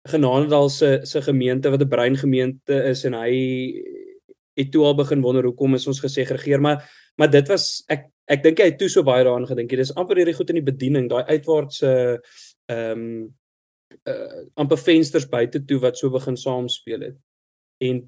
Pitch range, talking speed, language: 125-155 Hz, 200 wpm, English